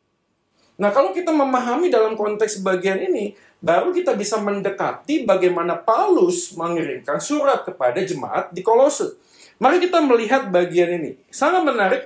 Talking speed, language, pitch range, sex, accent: 135 wpm, Indonesian, 205-295 Hz, male, native